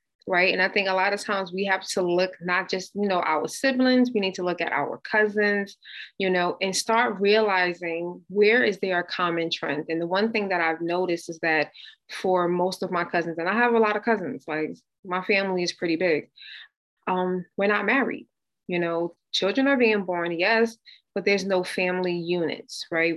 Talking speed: 205 wpm